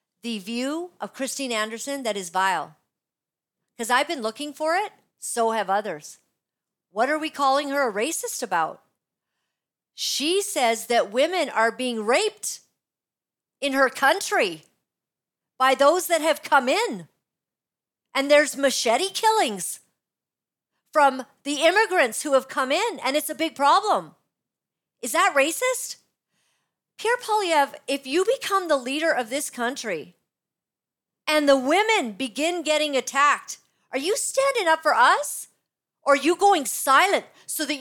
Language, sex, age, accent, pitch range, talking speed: English, female, 50-69, American, 225-320 Hz, 140 wpm